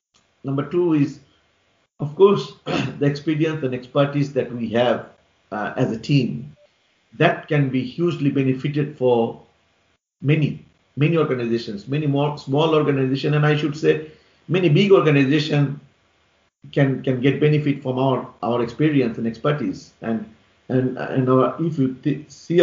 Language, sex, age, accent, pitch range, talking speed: English, male, 50-69, Indian, 115-145 Hz, 145 wpm